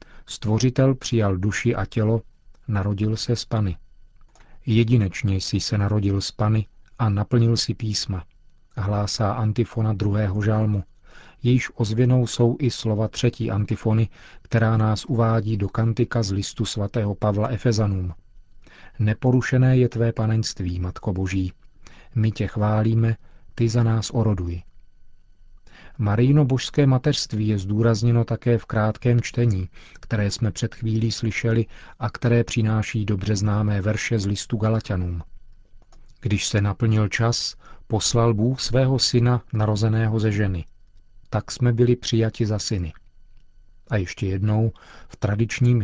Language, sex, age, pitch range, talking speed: Czech, male, 40-59, 100-115 Hz, 125 wpm